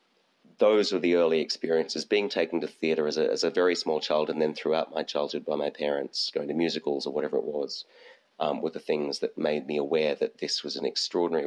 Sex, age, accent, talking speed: male, 30-49, Australian, 230 wpm